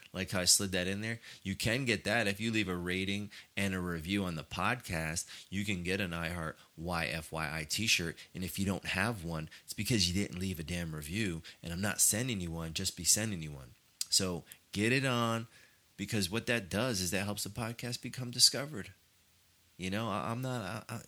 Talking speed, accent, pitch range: 215 wpm, American, 90-110 Hz